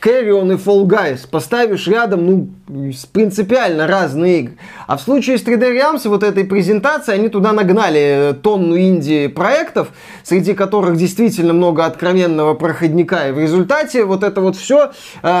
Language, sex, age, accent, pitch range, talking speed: Russian, male, 20-39, native, 170-220 Hz, 150 wpm